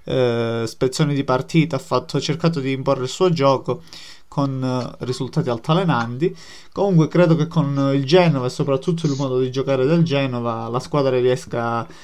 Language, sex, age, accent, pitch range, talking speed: Italian, male, 20-39, native, 130-165 Hz, 165 wpm